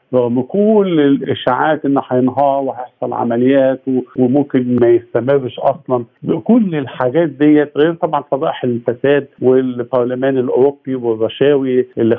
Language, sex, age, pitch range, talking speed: Arabic, male, 50-69, 115-135 Hz, 110 wpm